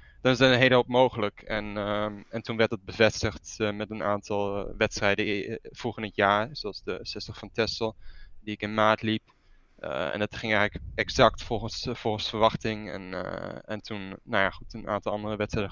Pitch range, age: 105-115 Hz, 20-39